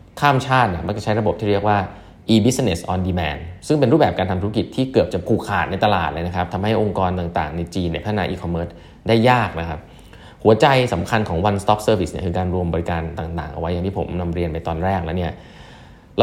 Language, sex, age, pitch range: Thai, male, 20-39, 90-110 Hz